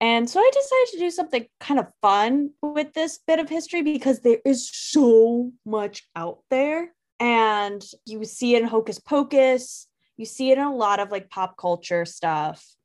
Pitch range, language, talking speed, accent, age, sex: 195-275 Hz, English, 185 wpm, American, 10-29, female